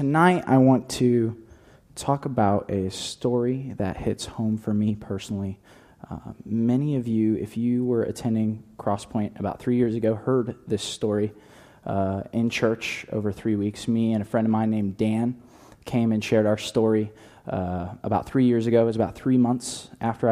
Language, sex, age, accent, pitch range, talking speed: English, male, 20-39, American, 100-120 Hz, 175 wpm